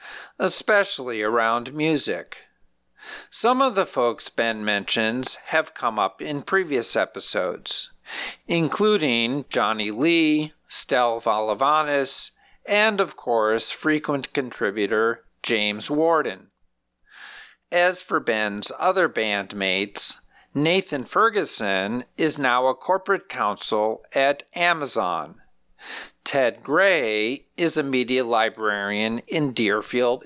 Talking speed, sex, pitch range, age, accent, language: 95 wpm, male, 115-175 Hz, 50-69, American, English